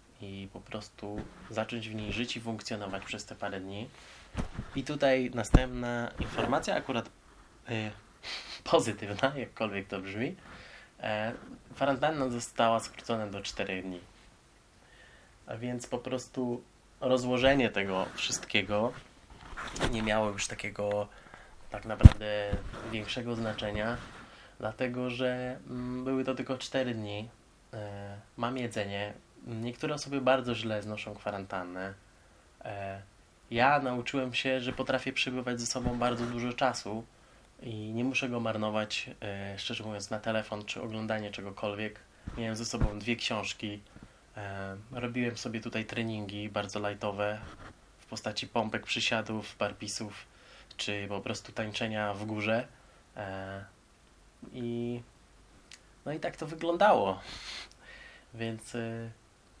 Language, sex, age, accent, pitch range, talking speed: Polish, male, 20-39, native, 105-125 Hz, 110 wpm